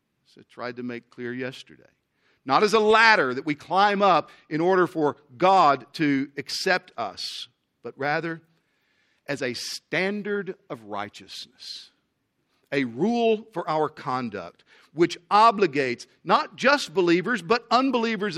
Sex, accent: male, American